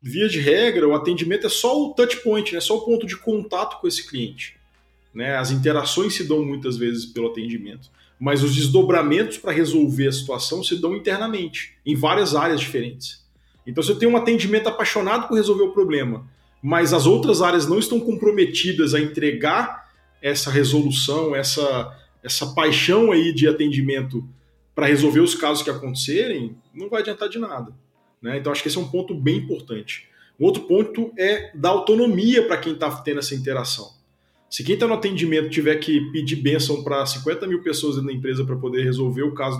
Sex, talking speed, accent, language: male, 185 wpm, Brazilian, Portuguese